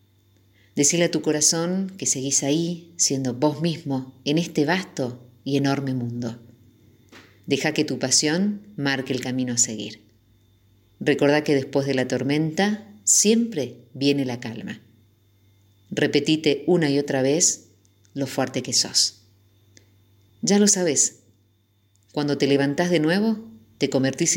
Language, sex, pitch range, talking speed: Spanish, female, 110-150 Hz, 135 wpm